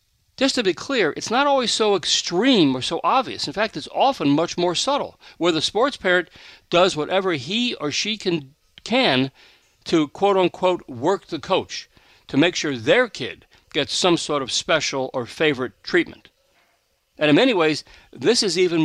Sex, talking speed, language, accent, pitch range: male, 175 wpm, English, American, 130-185 Hz